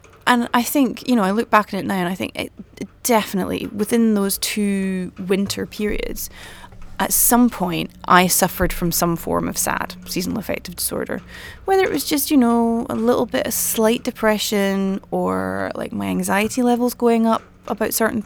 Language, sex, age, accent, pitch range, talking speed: English, female, 20-39, British, 165-240 Hz, 175 wpm